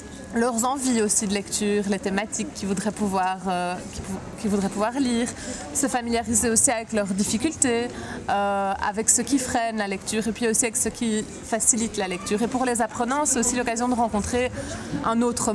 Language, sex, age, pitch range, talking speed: French, female, 20-39, 215-255 Hz, 195 wpm